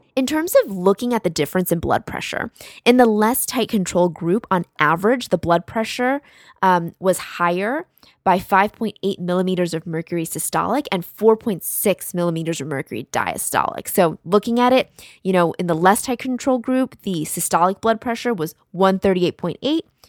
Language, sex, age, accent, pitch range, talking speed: English, female, 20-39, American, 170-220 Hz, 160 wpm